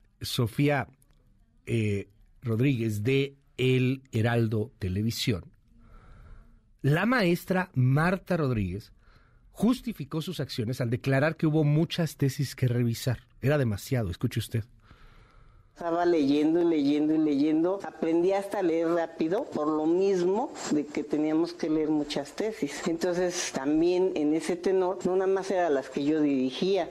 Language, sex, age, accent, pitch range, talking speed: Spanish, male, 50-69, Mexican, 125-165 Hz, 130 wpm